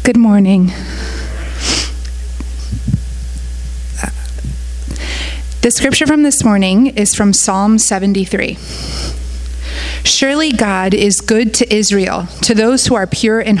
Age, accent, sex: 30-49, American, female